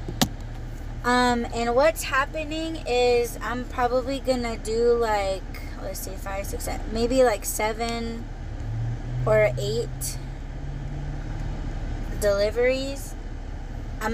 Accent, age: American, 20-39